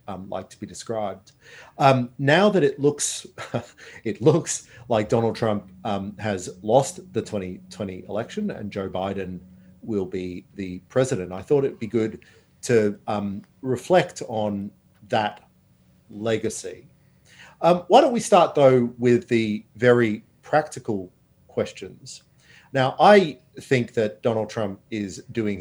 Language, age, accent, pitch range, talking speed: English, 40-59, Australian, 95-125 Hz, 135 wpm